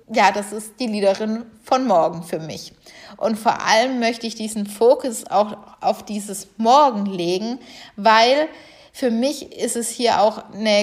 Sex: female